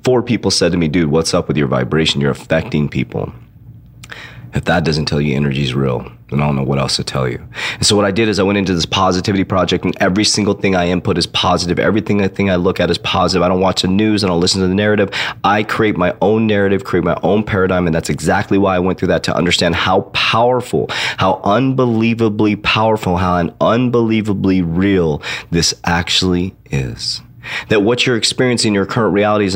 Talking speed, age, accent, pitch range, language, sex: 225 wpm, 30-49, American, 85-100 Hz, English, male